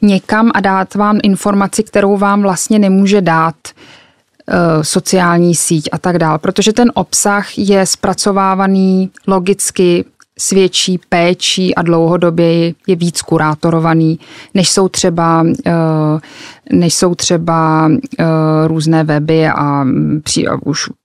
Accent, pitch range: native, 170-195 Hz